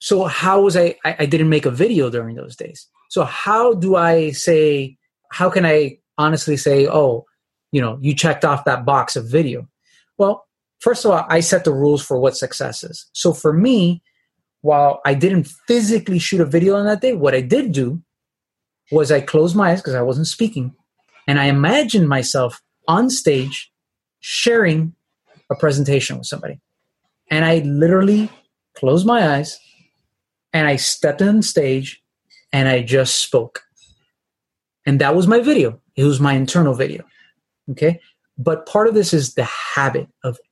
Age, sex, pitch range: 30-49, male, 140-180 Hz